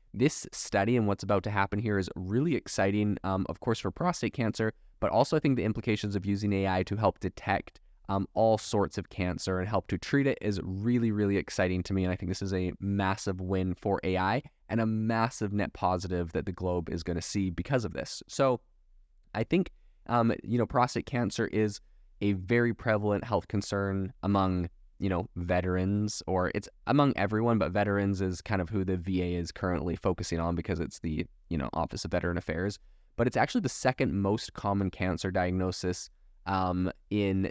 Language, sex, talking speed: English, male, 200 wpm